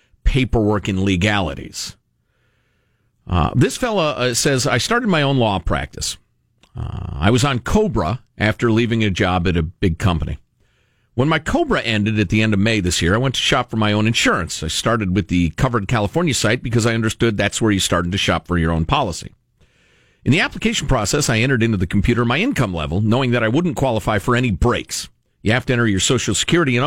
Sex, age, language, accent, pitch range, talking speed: male, 50-69, English, American, 100-150 Hz, 210 wpm